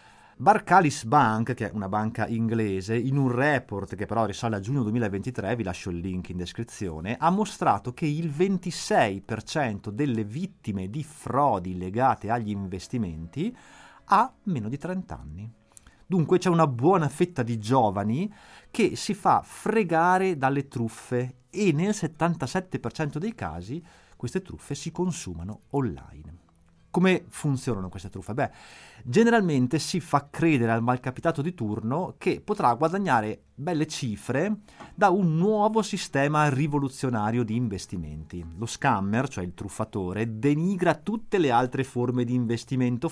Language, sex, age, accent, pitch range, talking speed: Italian, male, 30-49, native, 105-160 Hz, 140 wpm